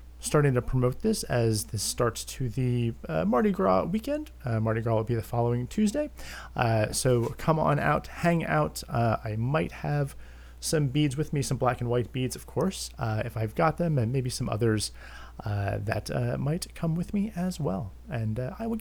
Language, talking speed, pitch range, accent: English, 205 wpm, 110-165 Hz, American